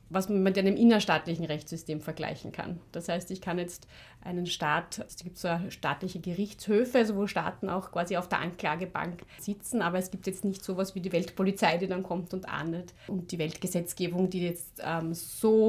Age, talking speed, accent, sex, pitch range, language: 30-49, 195 wpm, German, female, 180-210 Hz, English